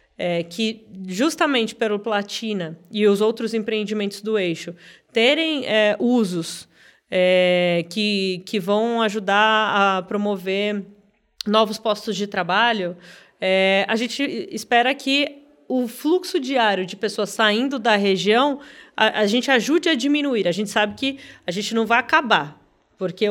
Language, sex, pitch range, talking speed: Portuguese, female, 195-245 Hz, 130 wpm